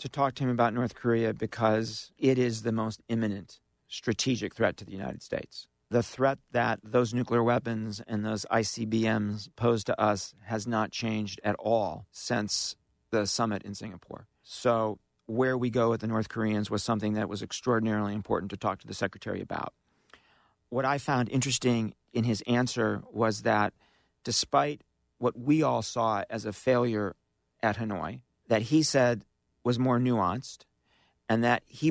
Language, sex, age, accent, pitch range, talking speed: English, male, 40-59, American, 110-130 Hz, 165 wpm